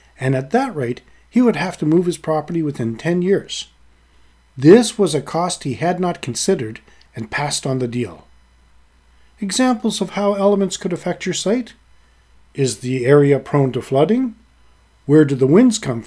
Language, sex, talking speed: English, male, 170 wpm